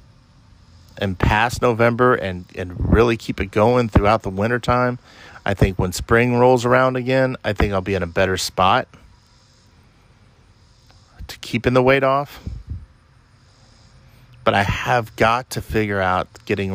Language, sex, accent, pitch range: English, male, American, 95-115 Hz